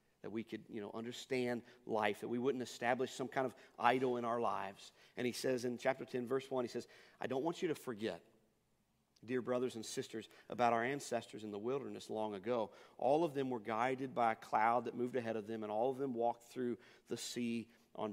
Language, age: English, 40-59